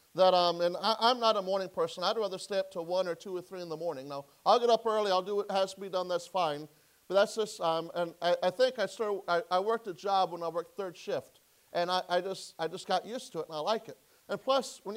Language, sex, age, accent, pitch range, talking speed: English, male, 40-59, American, 180-225 Hz, 295 wpm